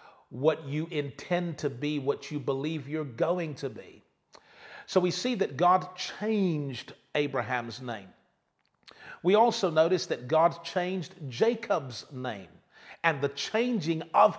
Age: 40-59